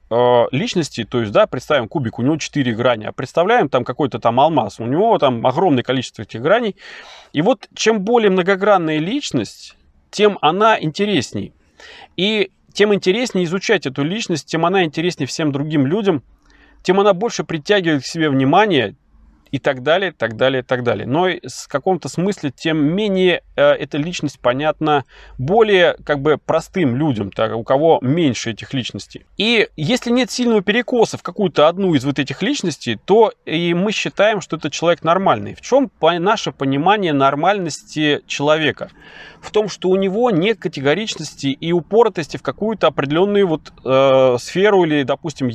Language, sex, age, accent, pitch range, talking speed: Russian, male, 30-49, native, 140-195 Hz, 165 wpm